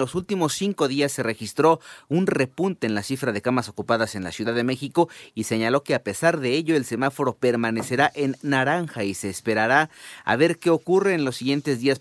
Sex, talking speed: male, 210 wpm